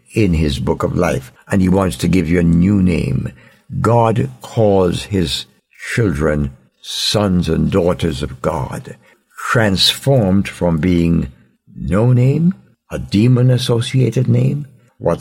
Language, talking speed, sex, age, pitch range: English, 125 wpm, male, 60-79, 80-110 Hz